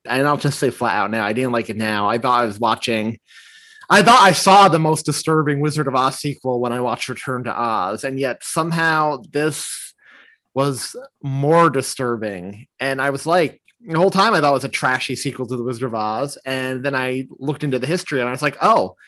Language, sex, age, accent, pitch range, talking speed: English, male, 30-49, American, 120-165 Hz, 225 wpm